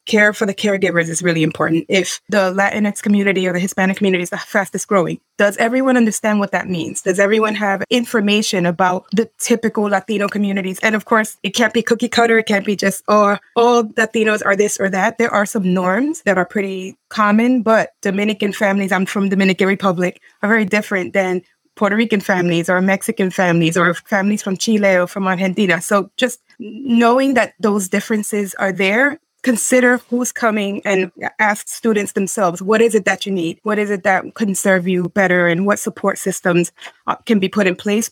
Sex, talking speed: female, 195 wpm